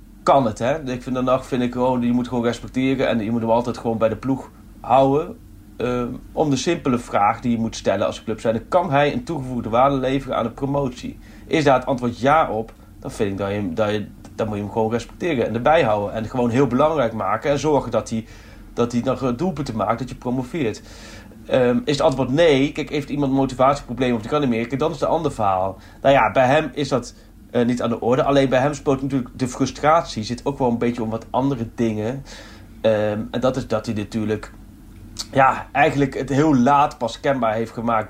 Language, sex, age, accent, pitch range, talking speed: Dutch, male, 30-49, Dutch, 110-130 Hz, 225 wpm